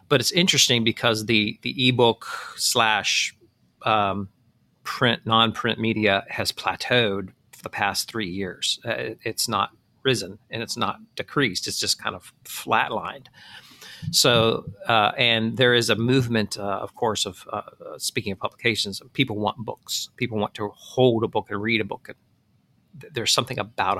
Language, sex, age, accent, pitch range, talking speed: English, male, 40-59, American, 105-120 Hz, 160 wpm